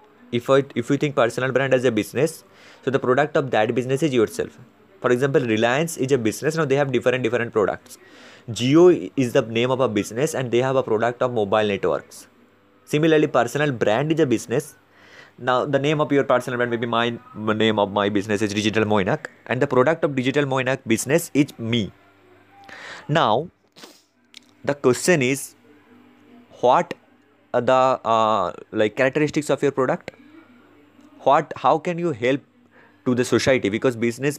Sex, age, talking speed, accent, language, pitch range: male, 20-39, 175 wpm, Indian, English, 115-145 Hz